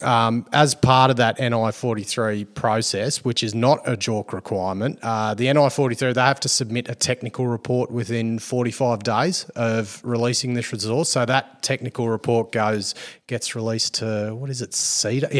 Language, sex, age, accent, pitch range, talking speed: English, male, 30-49, Australian, 110-130 Hz, 165 wpm